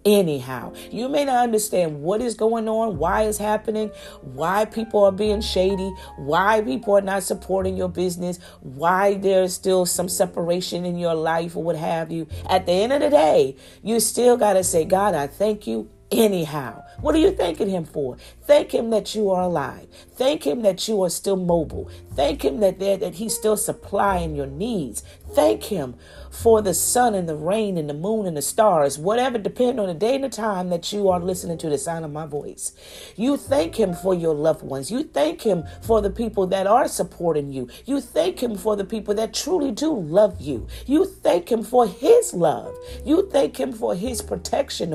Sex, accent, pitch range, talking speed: female, American, 170-225 Hz, 205 wpm